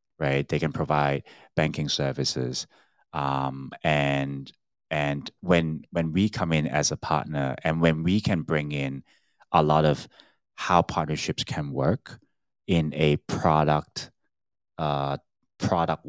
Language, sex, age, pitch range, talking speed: English, male, 30-49, 70-85 Hz, 130 wpm